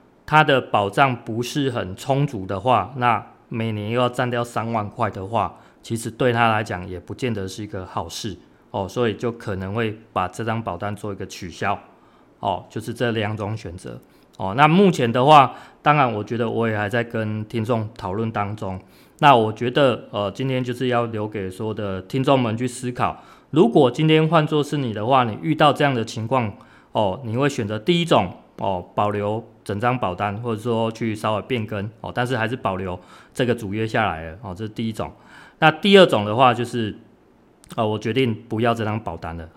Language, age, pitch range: Chinese, 20-39, 100-125 Hz